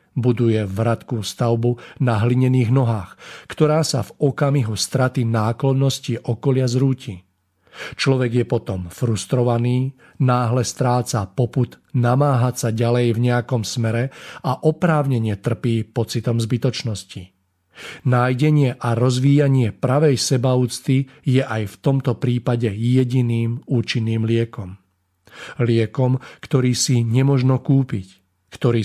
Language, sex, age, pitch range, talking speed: Slovak, male, 40-59, 110-130 Hz, 105 wpm